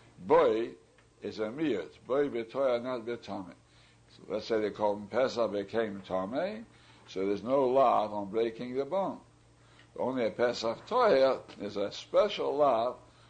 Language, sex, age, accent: English, male, 60-79, American